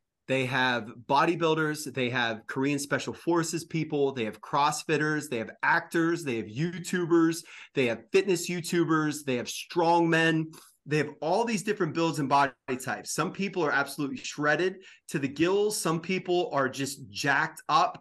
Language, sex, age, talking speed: English, male, 30-49, 165 wpm